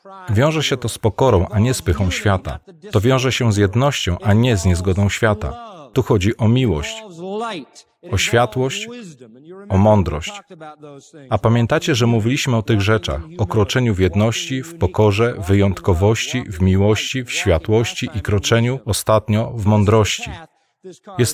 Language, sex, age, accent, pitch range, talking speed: Polish, male, 40-59, native, 105-130 Hz, 150 wpm